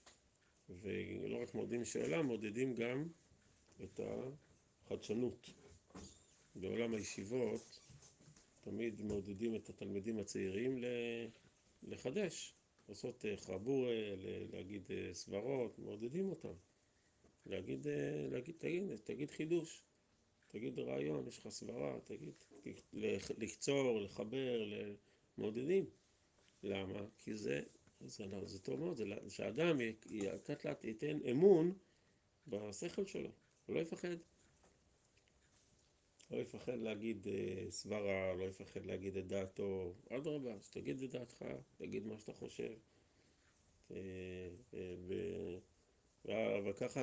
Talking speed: 100 wpm